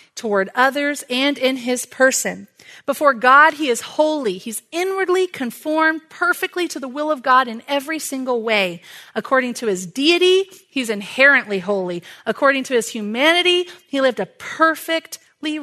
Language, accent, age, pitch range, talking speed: English, American, 30-49, 205-310 Hz, 150 wpm